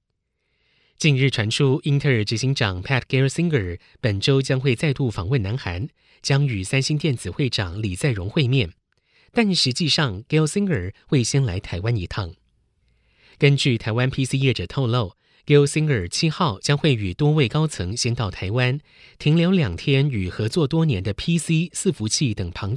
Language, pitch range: Chinese, 110-145 Hz